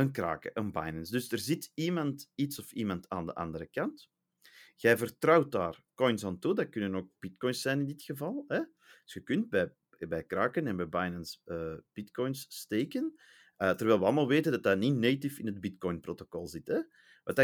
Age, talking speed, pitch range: 40-59, 195 wpm, 95-135 Hz